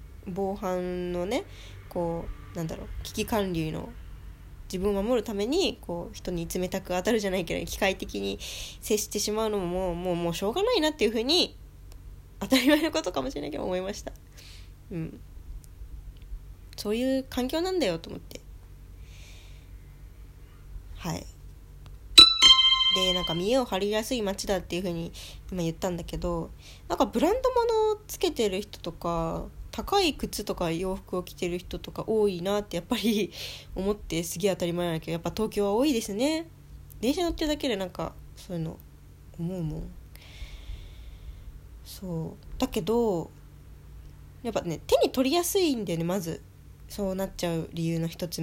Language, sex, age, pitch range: Japanese, female, 20-39, 165-220 Hz